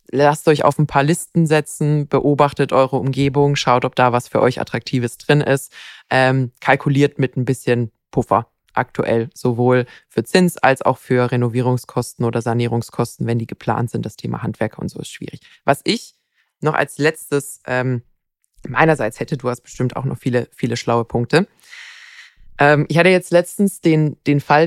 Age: 20-39